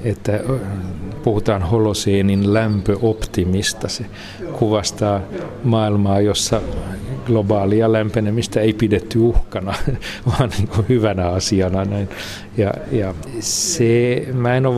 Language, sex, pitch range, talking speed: Finnish, male, 100-120 Hz, 95 wpm